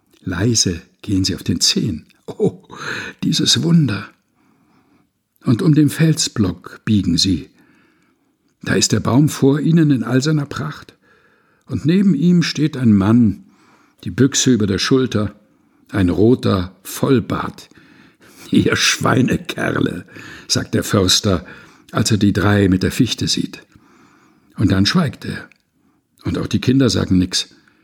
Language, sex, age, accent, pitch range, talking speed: German, male, 60-79, German, 95-130 Hz, 135 wpm